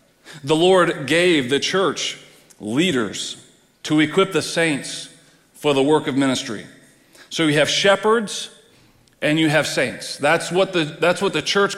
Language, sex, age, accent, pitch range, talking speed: English, male, 40-59, American, 145-195 Hz, 145 wpm